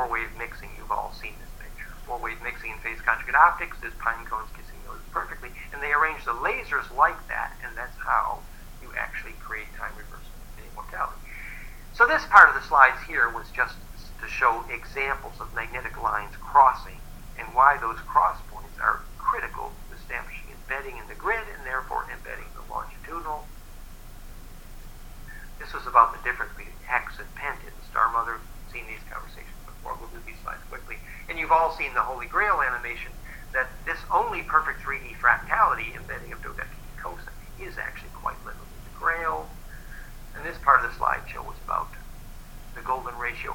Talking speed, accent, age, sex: 160 wpm, American, 50-69, male